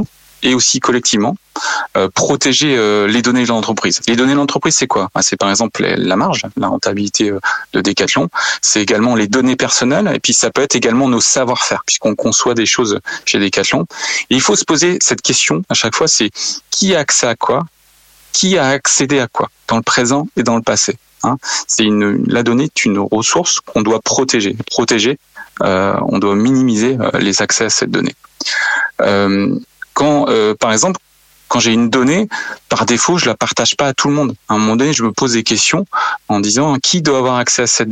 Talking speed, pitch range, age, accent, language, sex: 205 wpm, 110-135 Hz, 30-49, French, French, male